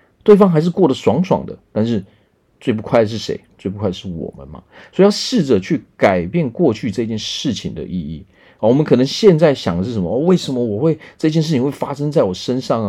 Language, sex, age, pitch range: Chinese, male, 40-59, 105-165 Hz